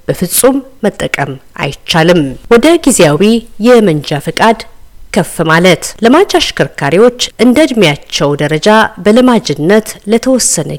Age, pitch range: 50-69, 165-245 Hz